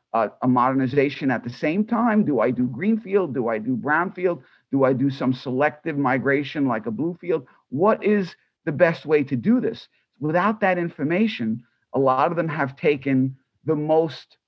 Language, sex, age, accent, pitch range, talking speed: English, male, 50-69, American, 130-180 Hz, 180 wpm